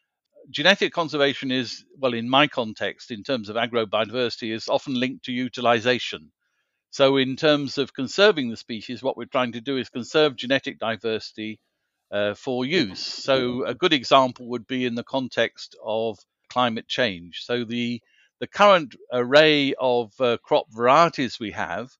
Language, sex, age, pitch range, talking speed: English, male, 50-69, 115-140 Hz, 160 wpm